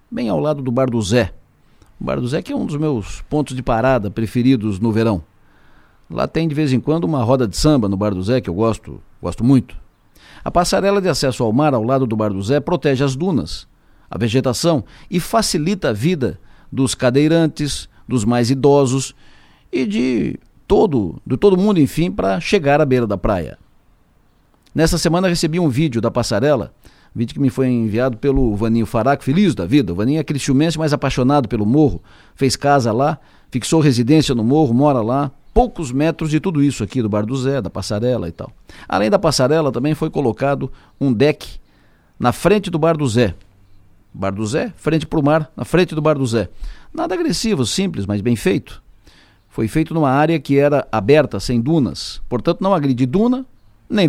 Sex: male